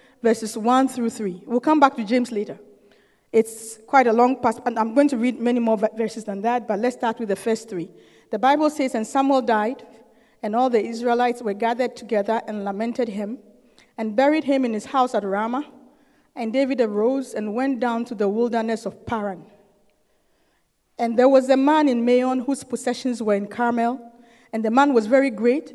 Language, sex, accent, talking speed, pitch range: English, female, Nigerian, 200 wpm, 225-275 Hz